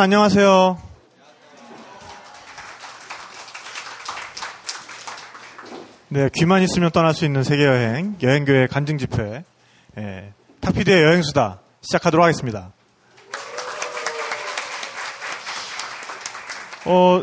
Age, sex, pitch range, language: 30-49, male, 125-175 Hz, Korean